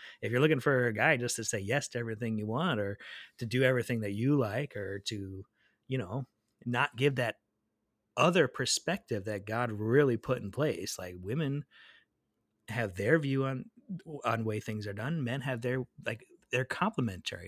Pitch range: 105-135 Hz